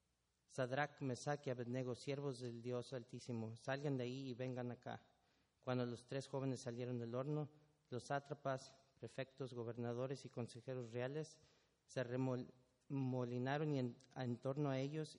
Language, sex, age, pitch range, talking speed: English, male, 40-59, 120-135 Hz, 140 wpm